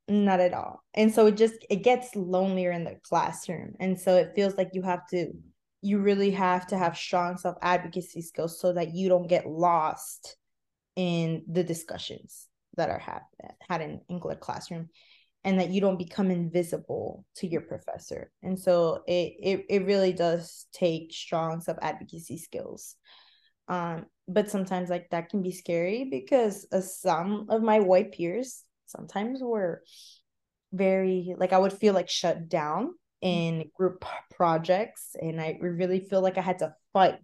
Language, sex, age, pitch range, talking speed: English, female, 20-39, 165-190 Hz, 165 wpm